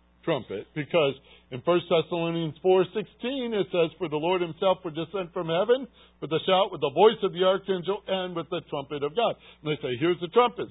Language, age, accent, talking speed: English, 60-79, American, 215 wpm